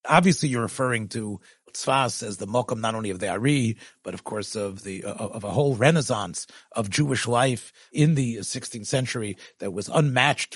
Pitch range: 115-150 Hz